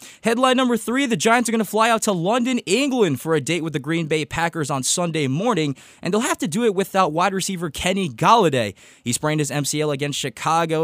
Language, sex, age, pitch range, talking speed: English, male, 20-39, 140-195 Hz, 220 wpm